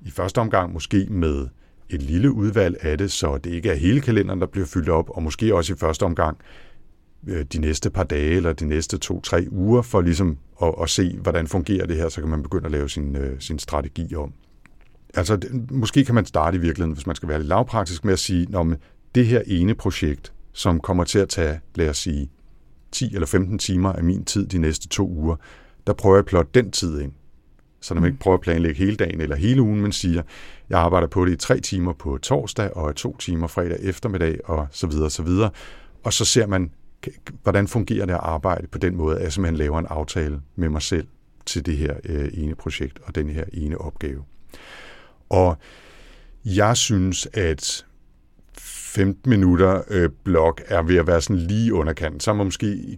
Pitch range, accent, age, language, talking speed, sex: 75-95 Hz, native, 60-79, Danish, 205 wpm, male